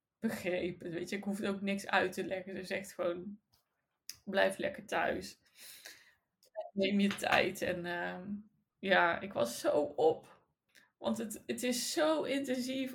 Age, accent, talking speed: 20-39, Dutch, 150 wpm